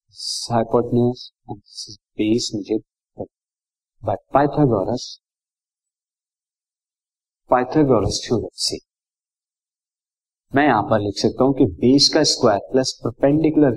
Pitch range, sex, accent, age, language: 120-150 Hz, male, native, 50-69, Hindi